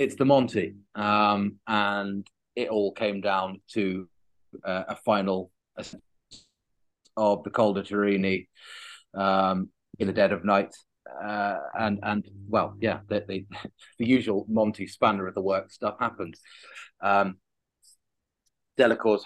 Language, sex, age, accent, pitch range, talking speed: English, male, 30-49, British, 95-105 Hz, 125 wpm